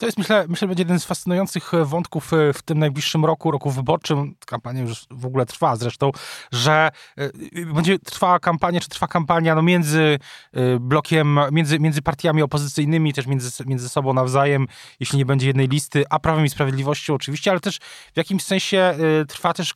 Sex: male